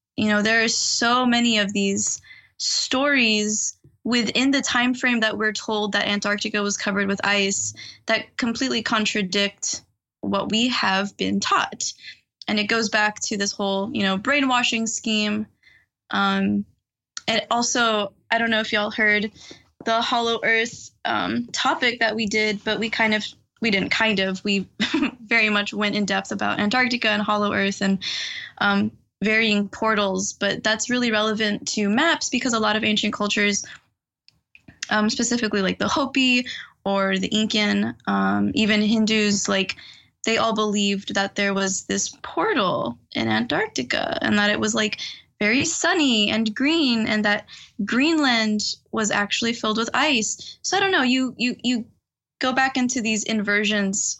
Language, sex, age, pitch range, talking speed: English, female, 20-39, 205-235 Hz, 160 wpm